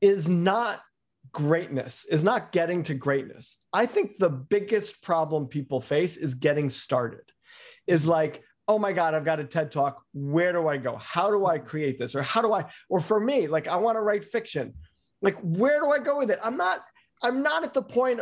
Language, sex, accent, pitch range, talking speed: English, male, American, 150-210 Hz, 210 wpm